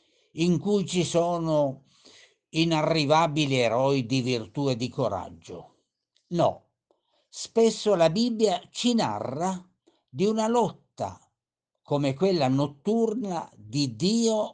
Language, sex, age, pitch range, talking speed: Italian, male, 60-79, 125-165 Hz, 105 wpm